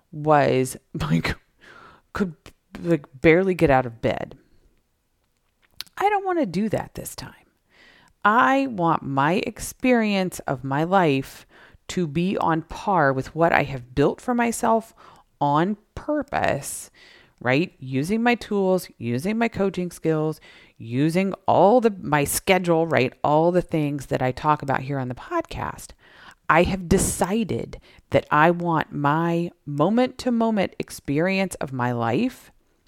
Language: English